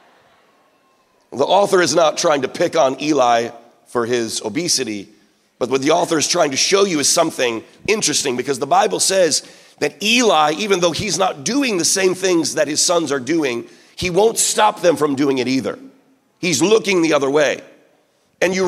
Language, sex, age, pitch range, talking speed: English, male, 40-59, 135-215 Hz, 185 wpm